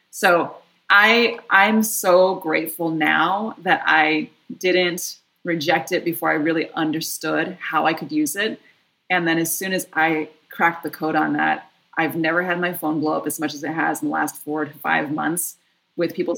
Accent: American